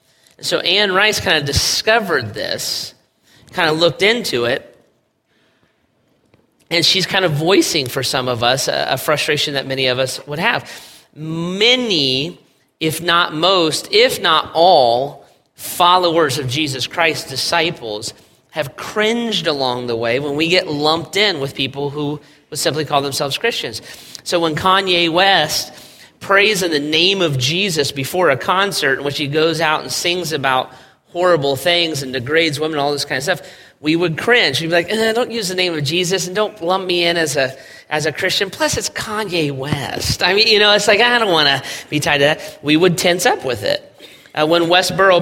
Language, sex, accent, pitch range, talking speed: English, male, American, 145-190 Hz, 185 wpm